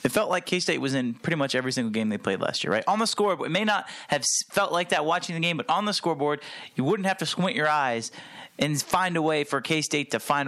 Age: 30-49